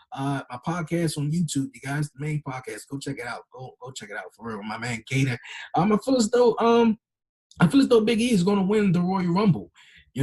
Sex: male